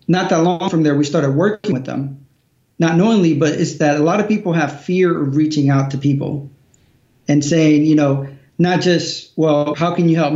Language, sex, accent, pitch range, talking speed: English, male, American, 140-165 Hz, 215 wpm